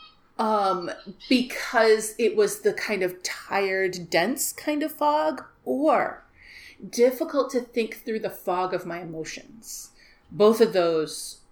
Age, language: 30-49, English